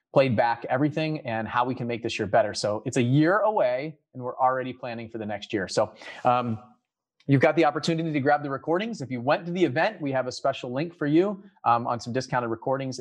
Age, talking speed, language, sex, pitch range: 30-49, 240 wpm, English, male, 115-155 Hz